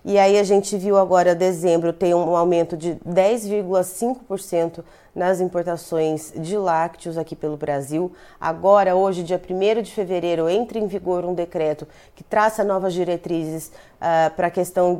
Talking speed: 150 wpm